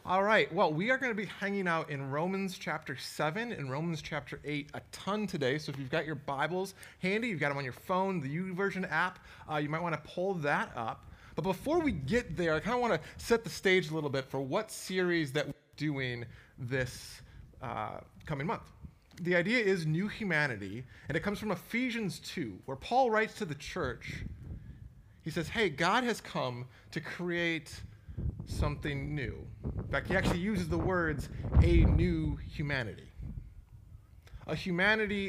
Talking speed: 185 wpm